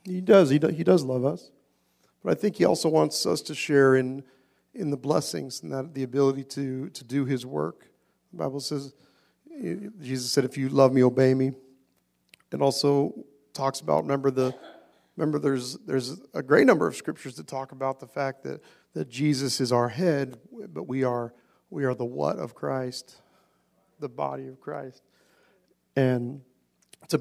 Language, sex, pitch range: English, male, 125-140 Hz